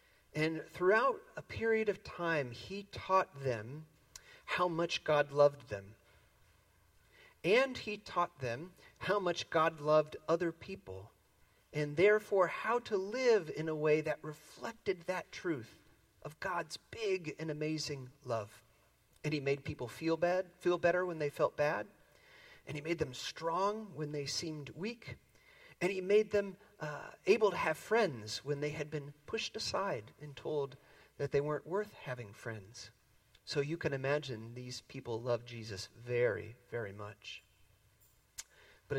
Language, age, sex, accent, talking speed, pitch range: English, 40-59, male, American, 150 wpm, 120-165 Hz